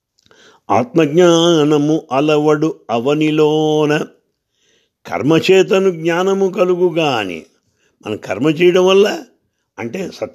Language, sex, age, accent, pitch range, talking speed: English, male, 60-79, Indian, 130-165 Hz, 65 wpm